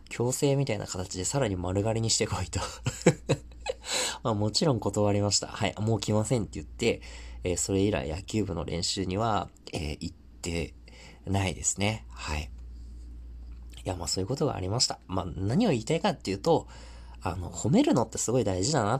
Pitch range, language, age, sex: 70-110 Hz, Japanese, 20-39, male